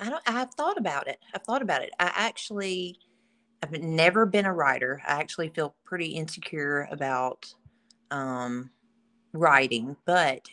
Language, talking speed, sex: English, 150 wpm, female